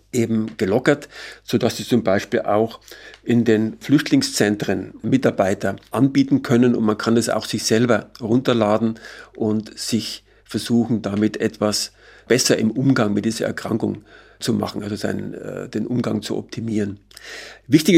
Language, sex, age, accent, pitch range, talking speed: German, male, 50-69, German, 105-125 Hz, 140 wpm